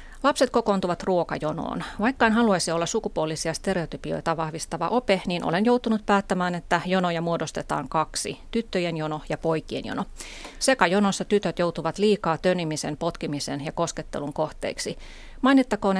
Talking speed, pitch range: 130 wpm, 160-205 Hz